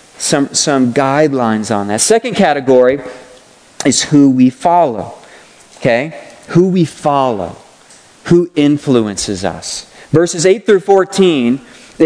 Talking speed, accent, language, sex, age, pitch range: 110 wpm, American, English, male, 40-59, 145-175 Hz